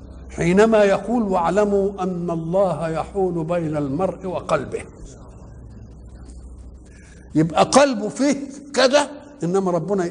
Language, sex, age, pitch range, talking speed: Arabic, male, 60-79, 160-230 Hz, 90 wpm